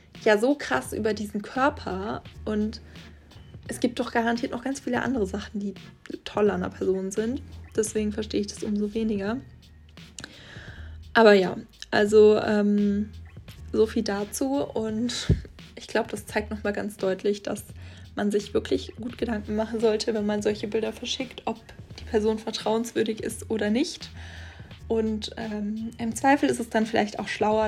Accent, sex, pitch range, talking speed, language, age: German, female, 185-220 Hz, 160 wpm, German, 20-39